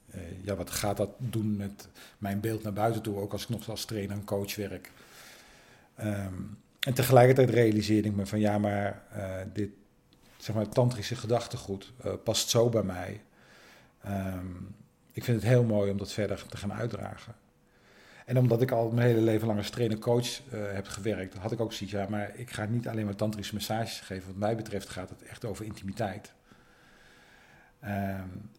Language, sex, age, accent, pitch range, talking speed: Dutch, male, 40-59, Dutch, 100-115 Hz, 190 wpm